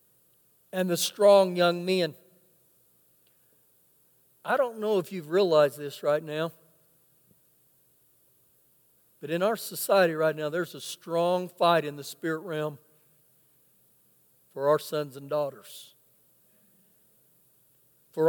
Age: 60-79